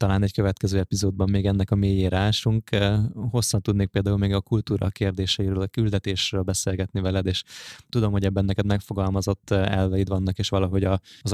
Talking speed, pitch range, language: 160 wpm, 95-105 Hz, Hungarian